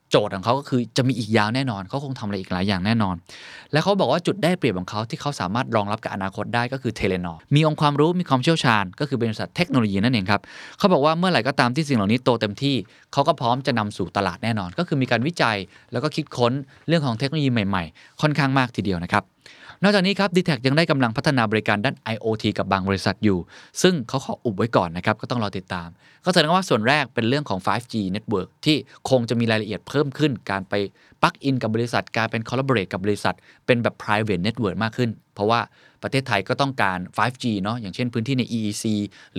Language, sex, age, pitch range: Thai, male, 20-39, 100-140 Hz